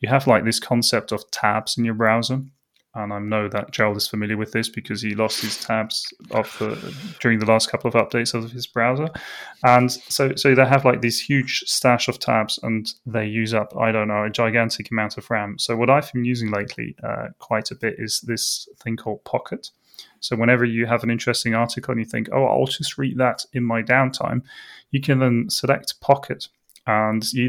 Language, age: English, 20-39